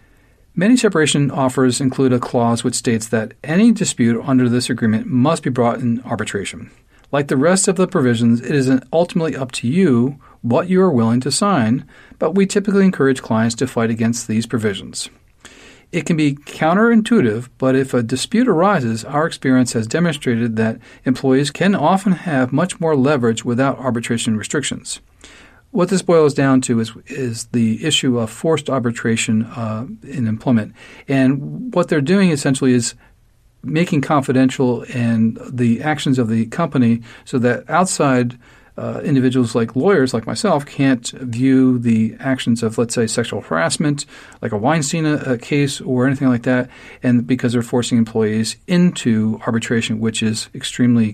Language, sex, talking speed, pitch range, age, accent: English, male, 160 wpm, 115-145 Hz, 40-59, American